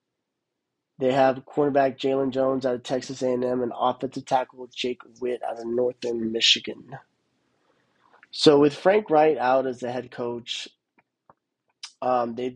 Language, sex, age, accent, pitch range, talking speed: English, male, 20-39, American, 125-140 Hz, 150 wpm